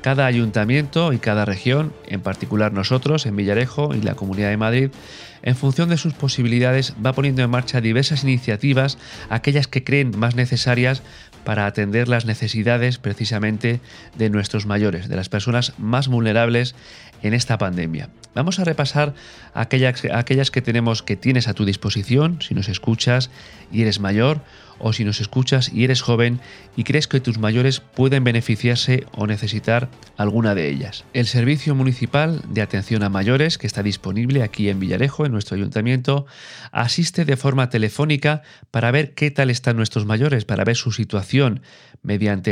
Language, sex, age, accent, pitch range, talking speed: Spanish, male, 30-49, Spanish, 110-135 Hz, 165 wpm